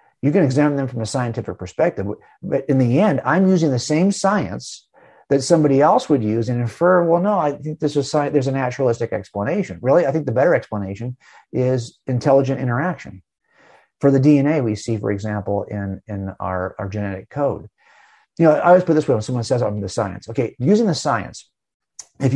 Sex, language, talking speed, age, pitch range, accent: male, English, 195 wpm, 50-69, 115-160 Hz, American